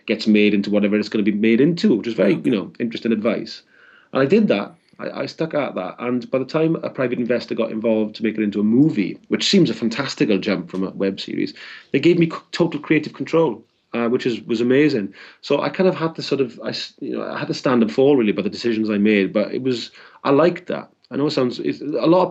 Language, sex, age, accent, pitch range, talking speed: English, male, 30-49, British, 105-130 Hz, 265 wpm